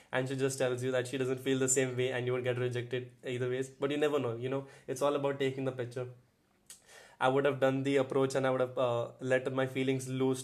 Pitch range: 130-145 Hz